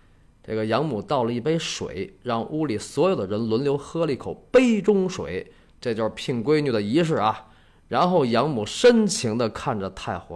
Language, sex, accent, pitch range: Chinese, male, native, 90-140 Hz